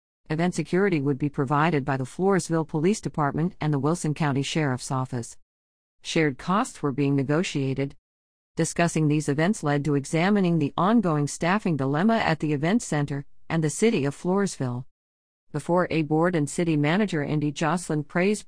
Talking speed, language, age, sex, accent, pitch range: 160 wpm, English, 50-69, female, American, 145-190 Hz